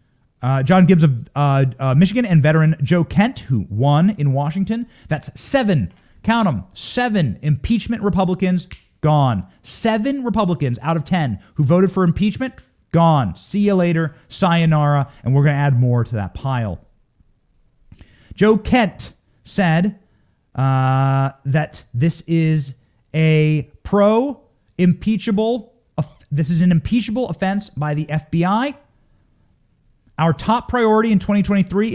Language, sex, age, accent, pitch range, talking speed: English, male, 30-49, American, 140-195 Hz, 130 wpm